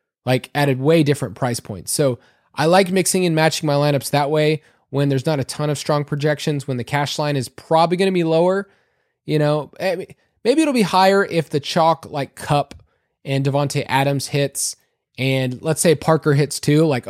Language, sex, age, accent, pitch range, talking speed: English, male, 20-39, American, 140-185 Hz, 200 wpm